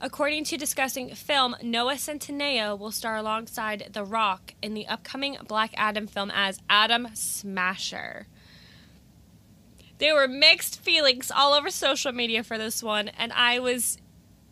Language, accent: English, American